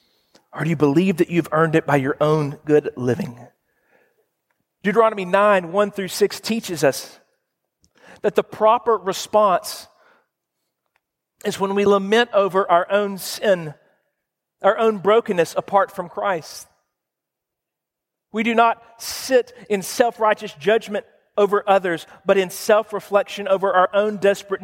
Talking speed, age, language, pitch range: 130 wpm, 40-59, English, 165-205 Hz